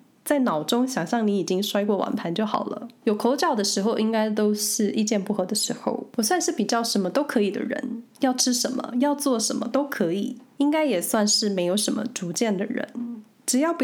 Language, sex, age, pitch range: Chinese, female, 20-39, 200-260 Hz